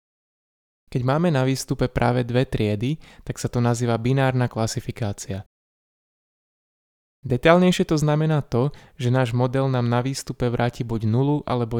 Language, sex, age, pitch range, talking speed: Slovak, male, 20-39, 110-130 Hz, 135 wpm